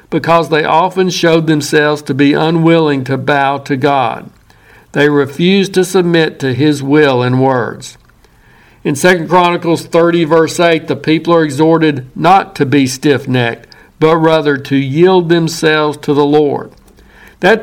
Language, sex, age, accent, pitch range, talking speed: English, male, 60-79, American, 145-170 Hz, 150 wpm